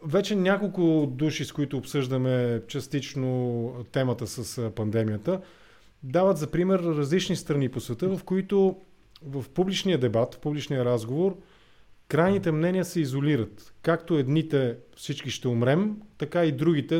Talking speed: 130 wpm